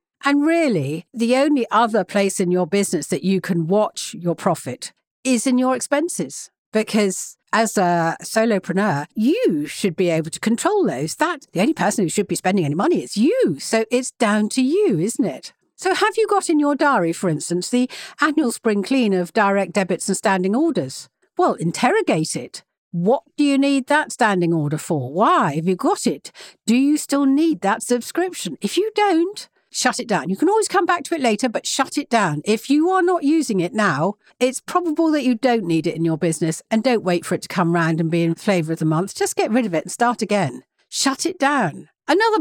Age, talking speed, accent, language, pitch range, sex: 60-79, 215 wpm, British, English, 185-285 Hz, female